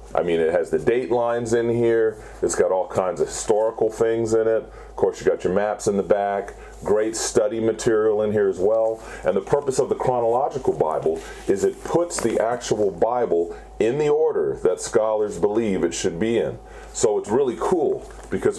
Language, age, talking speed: English, 40-59, 200 wpm